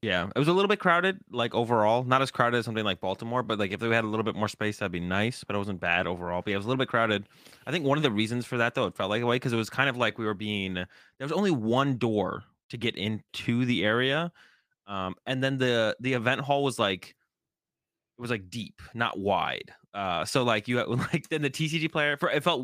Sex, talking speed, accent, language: male, 275 wpm, American, English